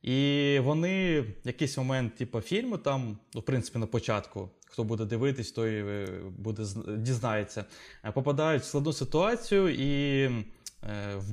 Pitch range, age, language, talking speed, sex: 110-145 Hz, 20-39, Ukrainian, 125 wpm, male